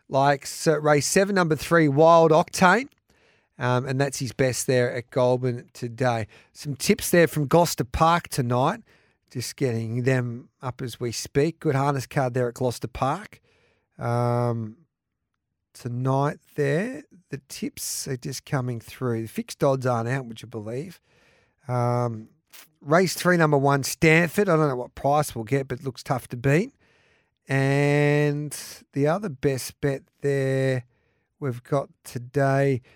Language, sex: English, male